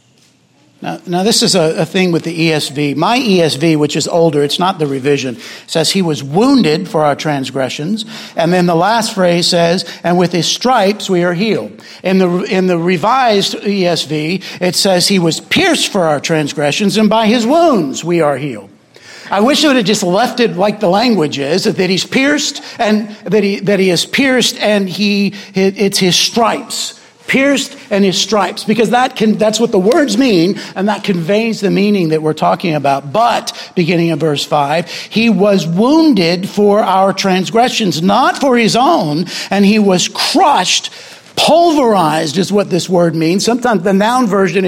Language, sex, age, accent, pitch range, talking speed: English, male, 60-79, American, 170-225 Hz, 185 wpm